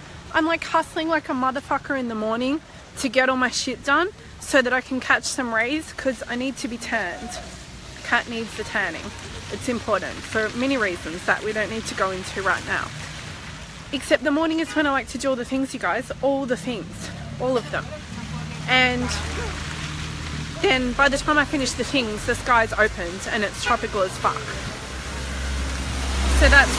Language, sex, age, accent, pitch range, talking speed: English, female, 20-39, Australian, 215-275 Hz, 190 wpm